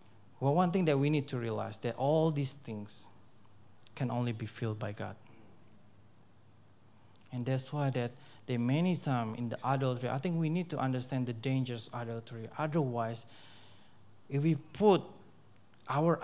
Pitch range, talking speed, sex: 115-155 Hz, 165 wpm, male